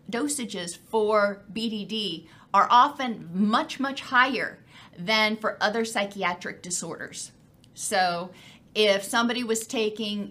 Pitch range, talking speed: 195-250 Hz, 105 wpm